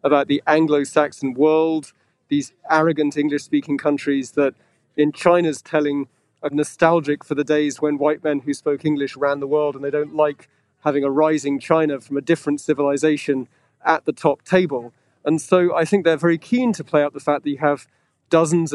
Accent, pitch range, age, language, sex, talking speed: British, 145-165 Hz, 30-49, English, male, 185 wpm